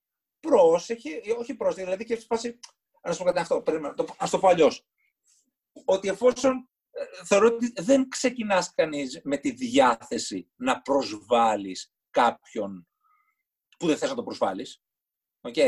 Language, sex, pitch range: Greek, male, 190-280 Hz